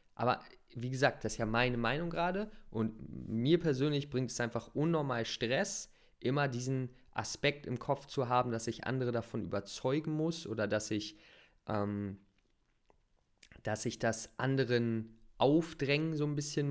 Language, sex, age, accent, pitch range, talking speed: German, male, 20-39, German, 110-140 Hz, 150 wpm